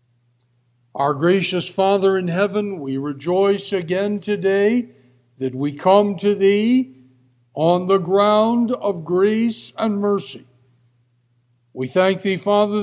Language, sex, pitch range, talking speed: English, male, 135-200 Hz, 115 wpm